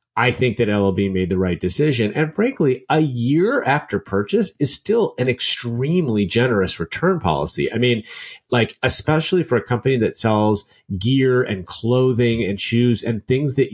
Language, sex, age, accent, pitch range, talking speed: English, male, 30-49, American, 100-130 Hz, 165 wpm